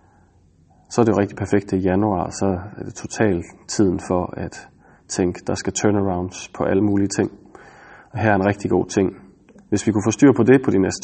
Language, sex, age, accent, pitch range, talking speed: Danish, male, 30-49, native, 90-110 Hz, 215 wpm